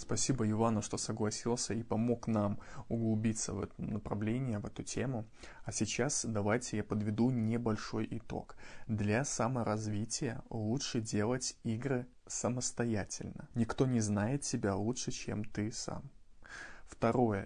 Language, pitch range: Russian, 110-125 Hz